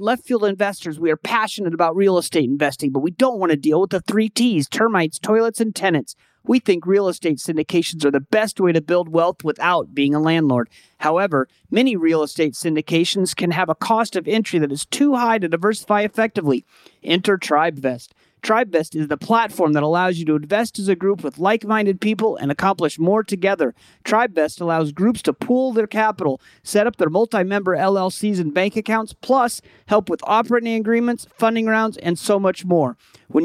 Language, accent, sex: English, American, male